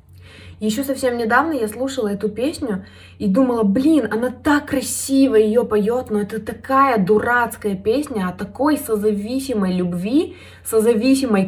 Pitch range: 175-240 Hz